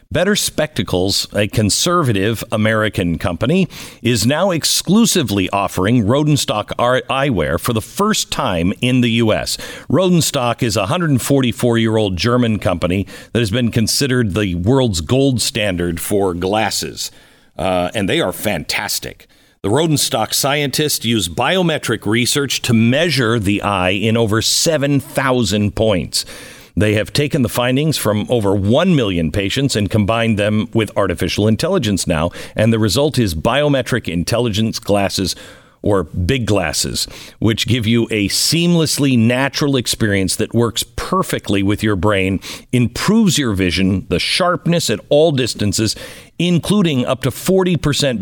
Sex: male